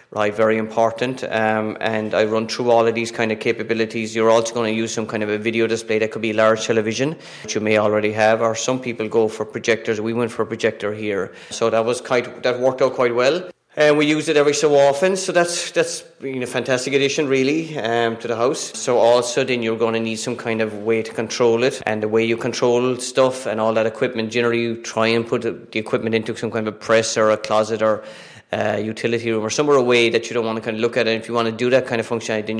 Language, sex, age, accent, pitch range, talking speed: English, male, 30-49, Irish, 110-120 Hz, 265 wpm